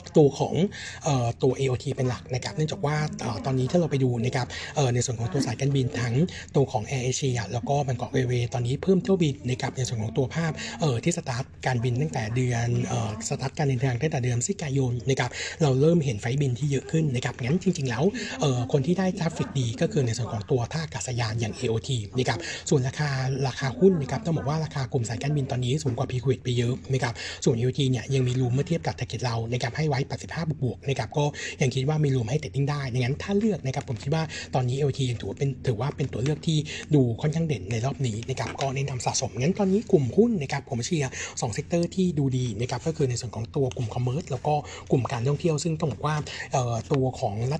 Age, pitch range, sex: 60-79, 125-150 Hz, male